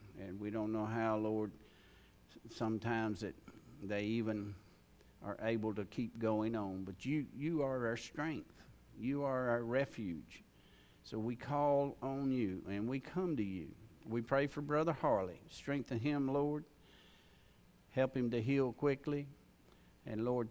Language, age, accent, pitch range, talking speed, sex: English, 50-69, American, 105-135 Hz, 150 wpm, male